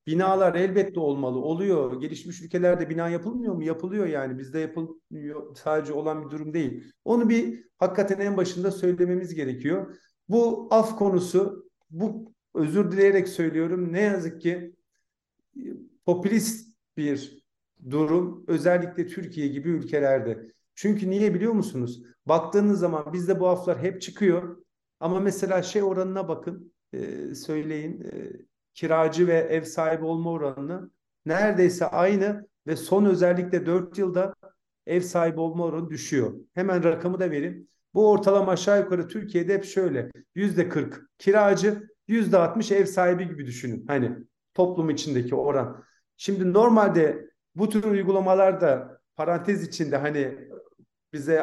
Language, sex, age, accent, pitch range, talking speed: Turkish, male, 50-69, native, 160-195 Hz, 130 wpm